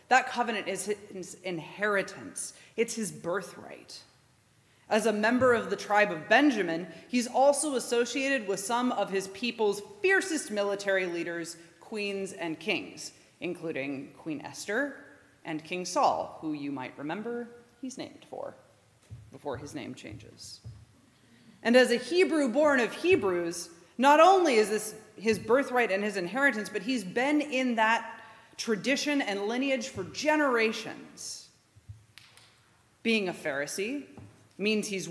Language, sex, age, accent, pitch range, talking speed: English, female, 30-49, American, 170-240 Hz, 135 wpm